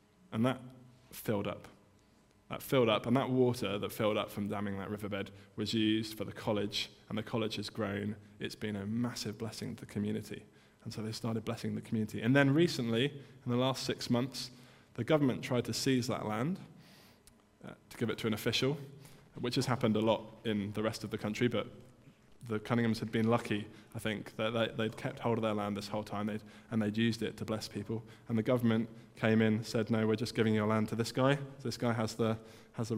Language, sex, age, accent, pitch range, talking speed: English, male, 20-39, British, 110-125 Hz, 220 wpm